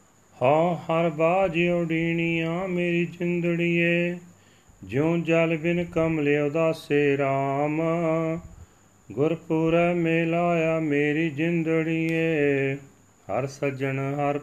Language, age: Punjabi, 40-59